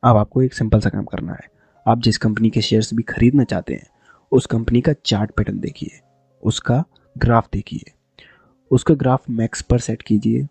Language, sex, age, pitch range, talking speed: Hindi, male, 20-39, 110-135 Hz, 190 wpm